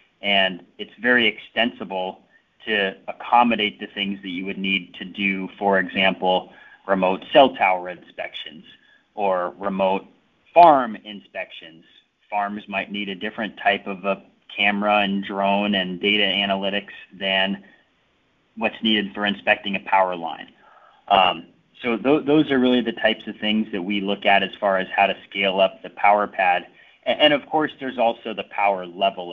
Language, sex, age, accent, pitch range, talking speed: English, male, 30-49, American, 95-105 Hz, 160 wpm